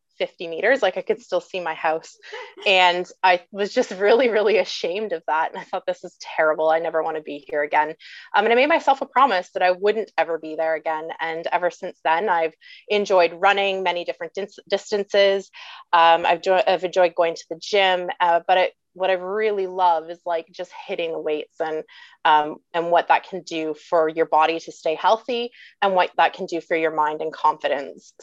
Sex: female